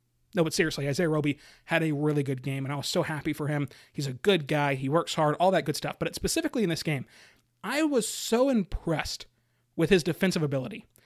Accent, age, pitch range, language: American, 30-49, 155-215 Hz, English